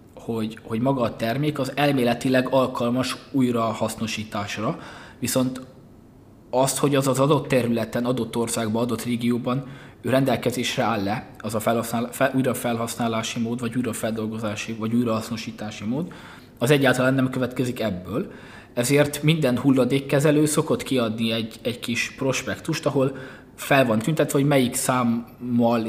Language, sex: Hungarian, male